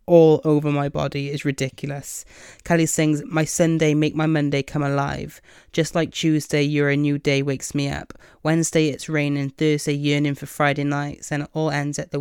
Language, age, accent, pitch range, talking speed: English, 30-49, British, 140-160 Hz, 190 wpm